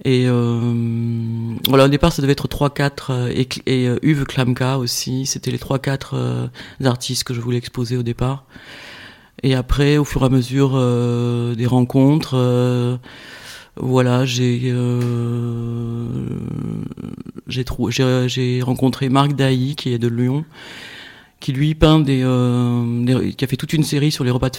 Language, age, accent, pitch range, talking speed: French, 30-49, French, 115-130 Hz, 165 wpm